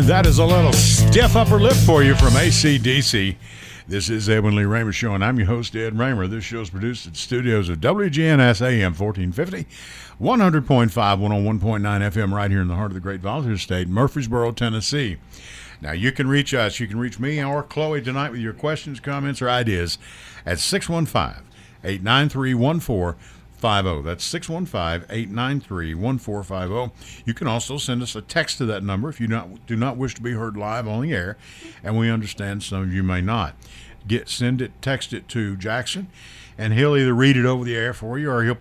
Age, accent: 50-69, American